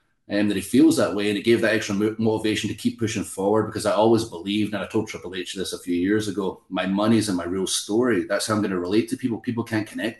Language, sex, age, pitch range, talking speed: English, male, 30-49, 90-105 Hz, 290 wpm